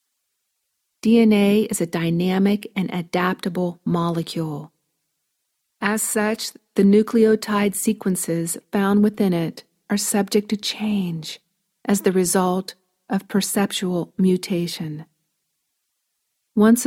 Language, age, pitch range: English, 40-59, 170-210 Hz